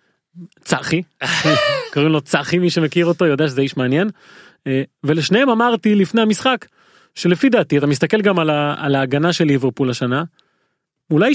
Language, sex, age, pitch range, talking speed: Hebrew, male, 30-49, 145-200 Hz, 135 wpm